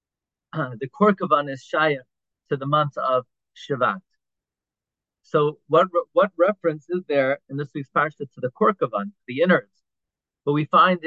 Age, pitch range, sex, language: 40-59, 135-180 Hz, male, English